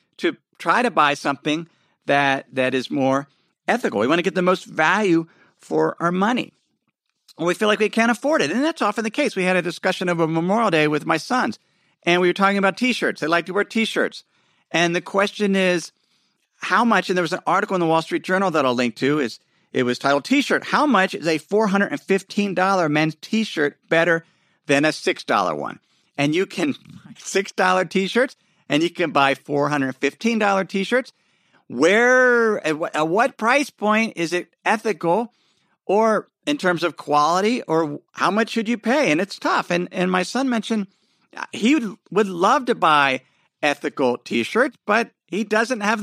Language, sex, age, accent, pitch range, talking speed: English, male, 50-69, American, 155-220 Hz, 195 wpm